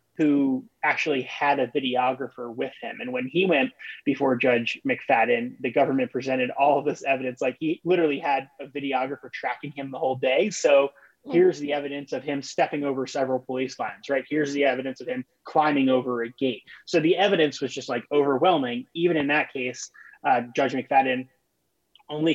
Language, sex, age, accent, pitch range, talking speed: English, male, 20-39, American, 130-160 Hz, 185 wpm